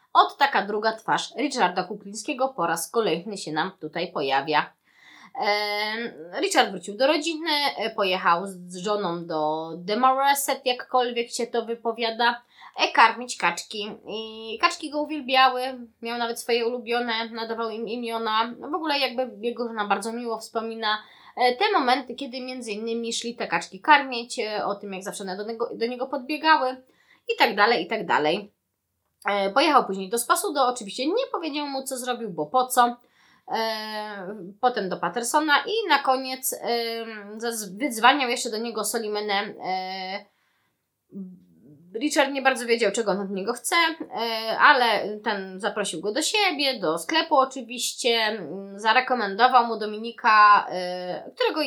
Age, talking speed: 20-39, 135 wpm